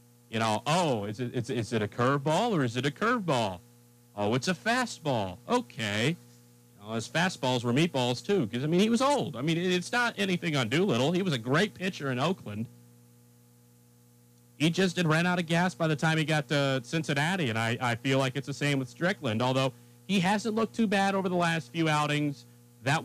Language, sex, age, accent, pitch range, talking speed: English, male, 40-59, American, 120-165 Hz, 215 wpm